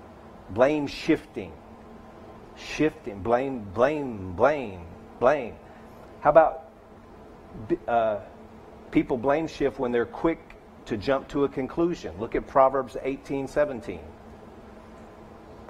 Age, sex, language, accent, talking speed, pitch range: 50-69, male, English, American, 95 wpm, 110-140 Hz